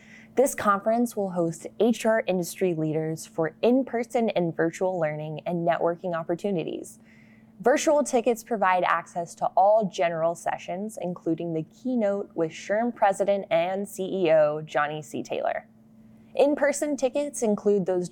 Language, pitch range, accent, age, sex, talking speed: English, 165-220 Hz, American, 20-39, female, 135 wpm